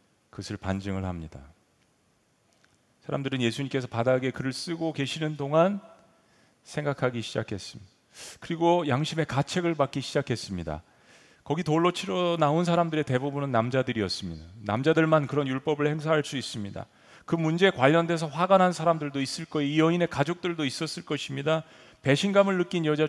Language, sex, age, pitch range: Korean, male, 40-59, 110-160 Hz